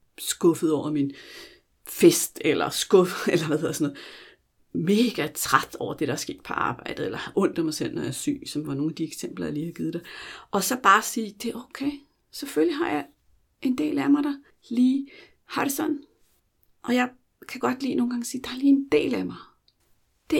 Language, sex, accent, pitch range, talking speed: Danish, female, native, 175-265 Hz, 210 wpm